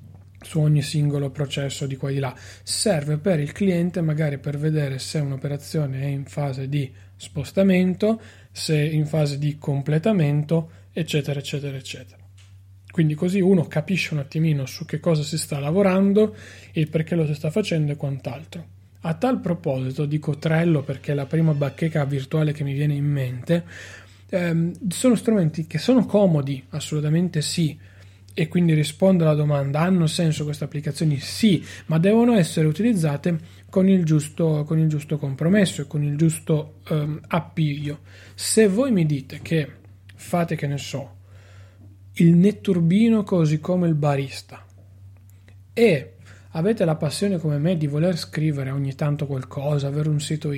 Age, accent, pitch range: 30-49, native, 135-170 Hz